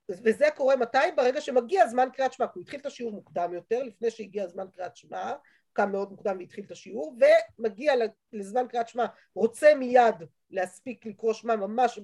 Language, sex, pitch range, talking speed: Hebrew, female, 205-290 Hz, 180 wpm